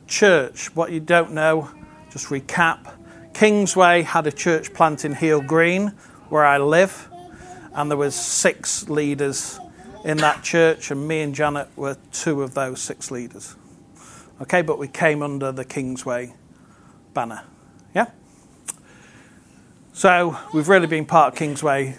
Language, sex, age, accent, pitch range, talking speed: English, male, 40-59, British, 140-180 Hz, 140 wpm